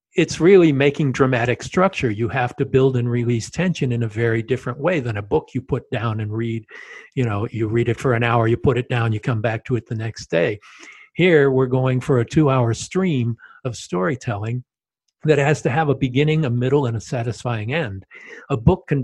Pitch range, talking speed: 120-150 Hz, 220 wpm